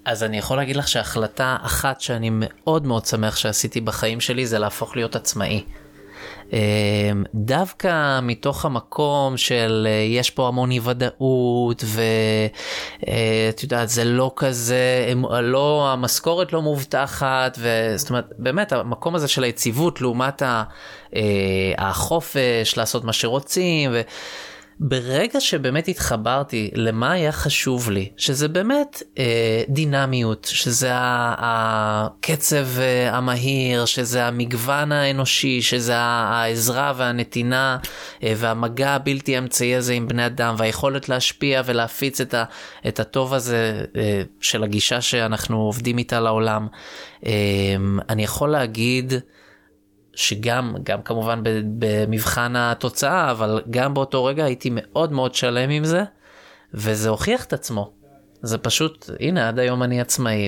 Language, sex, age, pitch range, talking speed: Hebrew, male, 20-39, 110-135 Hz, 120 wpm